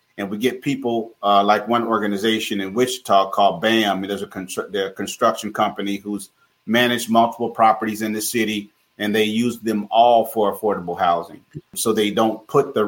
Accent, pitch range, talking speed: American, 105-120 Hz, 175 wpm